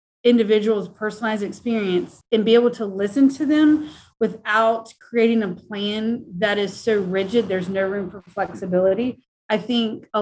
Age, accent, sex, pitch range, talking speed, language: 30-49, American, female, 200-240 Hz, 155 wpm, English